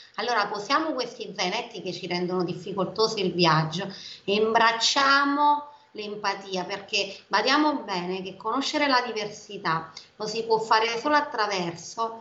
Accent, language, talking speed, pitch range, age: native, Italian, 130 wpm, 180-235 Hz, 30-49